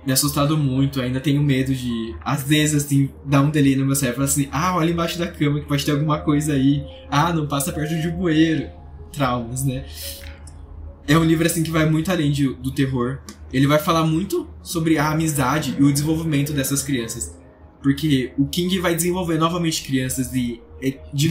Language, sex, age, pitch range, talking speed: Portuguese, male, 10-29, 125-160 Hz, 190 wpm